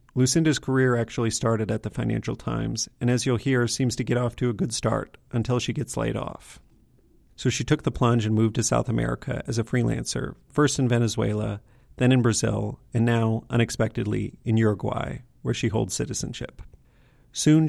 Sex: male